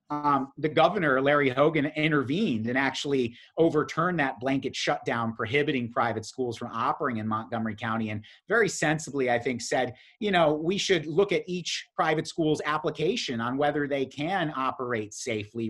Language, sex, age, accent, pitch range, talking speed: English, male, 30-49, American, 130-175 Hz, 160 wpm